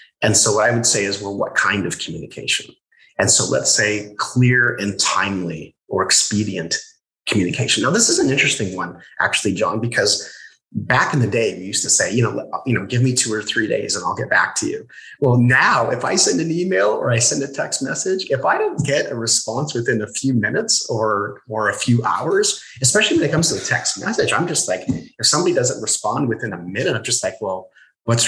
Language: English